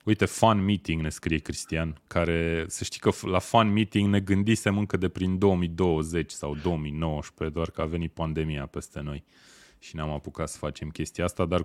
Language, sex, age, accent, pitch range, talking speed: Romanian, male, 20-39, native, 75-95 Hz, 185 wpm